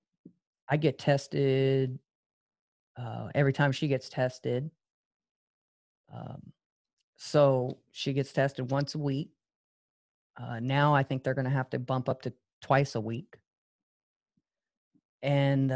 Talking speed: 125 wpm